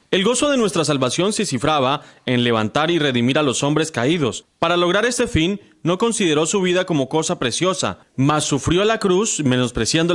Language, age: Spanish, 30-49